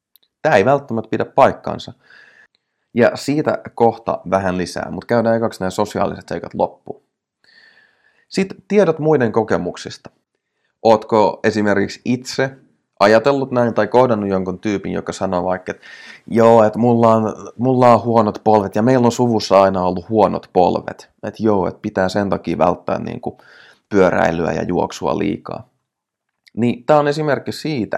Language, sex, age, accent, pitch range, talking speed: Finnish, male, 30-49, native, 95-125 Hz, 145 wpm